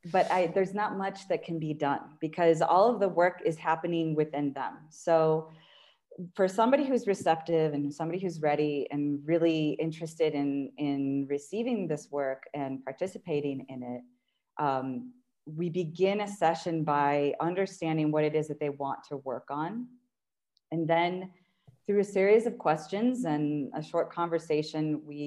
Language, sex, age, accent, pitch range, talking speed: English, female, 30-49, American, 145-180 Hz, 155 wpm